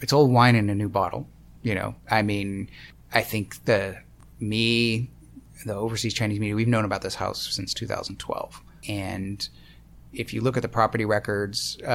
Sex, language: male, English